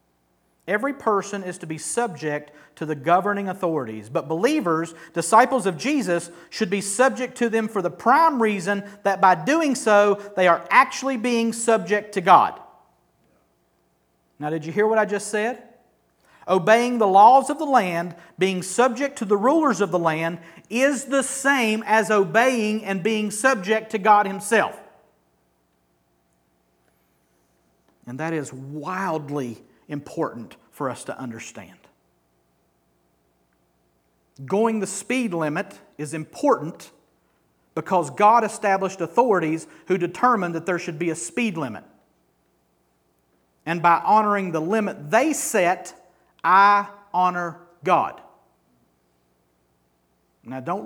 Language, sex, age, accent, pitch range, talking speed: English, male, 50-69, American, 125-210 Hz, 125 wpm